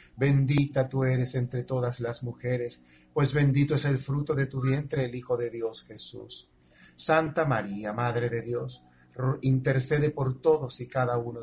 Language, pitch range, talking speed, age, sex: Spanish, 115-140 Hz, 165 wpm, 40-59, male